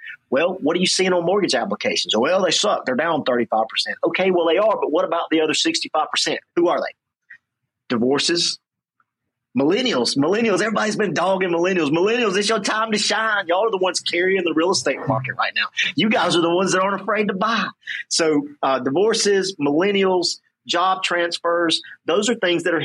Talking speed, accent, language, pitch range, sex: 190 wpm, American, English, 160-210 Hz, male